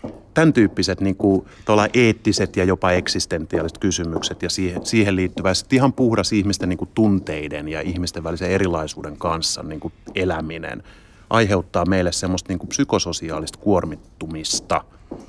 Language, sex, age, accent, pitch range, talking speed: Finnish, male, 30-49, native, 85-105 Hz, 130 wpm